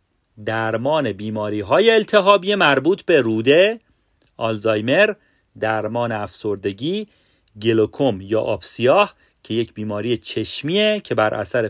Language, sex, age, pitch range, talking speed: Persian, male, 40-59, 105-150 Hz, 105 wpm